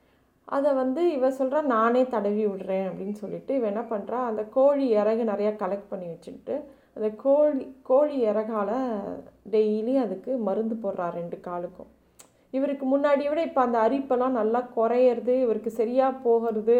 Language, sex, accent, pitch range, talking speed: Tamil, female, native, 205-250 Hz, 145 wpm